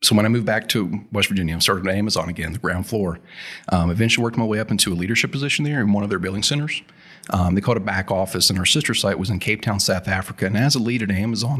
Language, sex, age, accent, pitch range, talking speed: English, male, 40-59, American, 95-120 Hz, 285 wpm